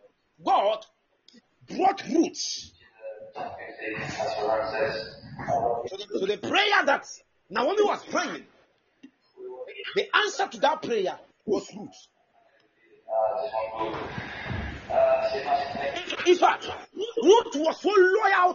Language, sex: Japanese, male